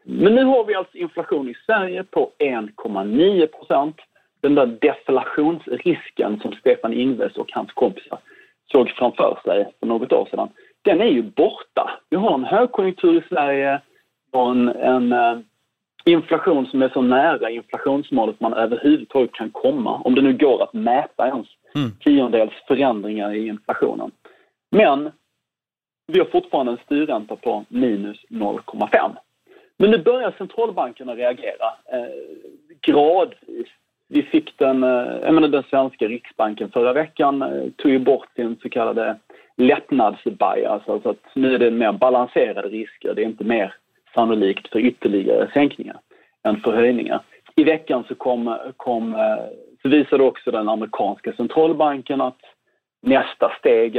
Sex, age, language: male, 40-59, Swedish